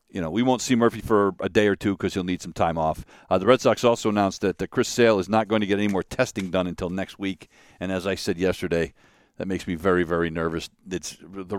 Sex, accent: male, American